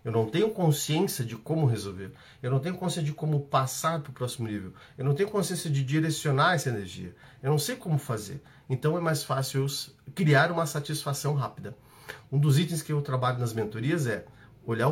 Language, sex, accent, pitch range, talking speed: Portuguese, male, Brazilian, 125-160 Hz, 195 wpm